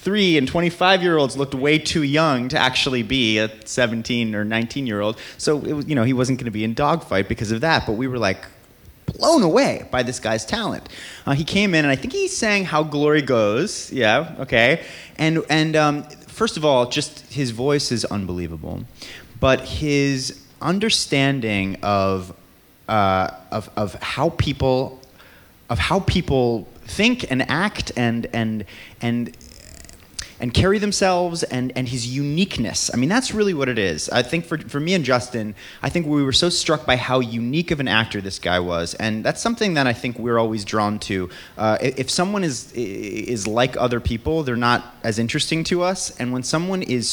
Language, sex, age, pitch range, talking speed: English, male, 30-49, 115-155 Hz, 190 wpm